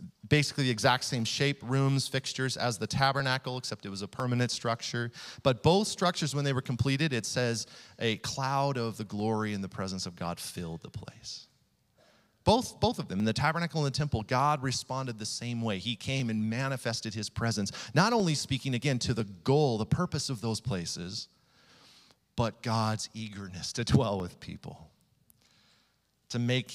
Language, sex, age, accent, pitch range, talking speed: English, male, 40-59, American, 110-140 Hz, 180 wpm